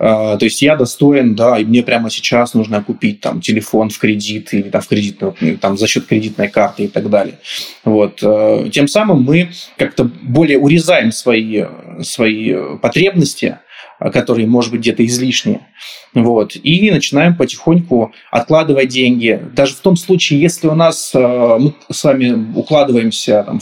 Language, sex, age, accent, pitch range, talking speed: Russian, male, 20-39, native, 110-145 Hz, 155 wpm